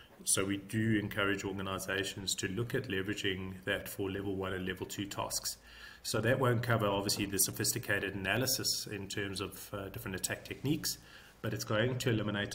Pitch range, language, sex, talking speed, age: 95-110 Hz, English, male, 175 wpm, 30-49